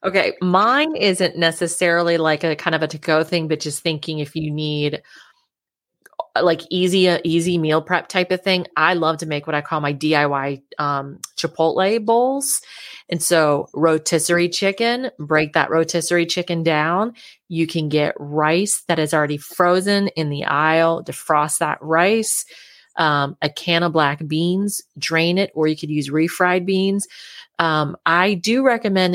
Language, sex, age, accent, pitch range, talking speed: English, female, 30-49, American, 155-180 Hz, 165 wpm